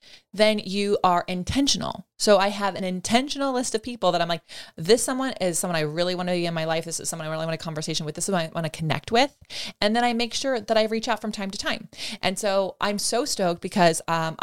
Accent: American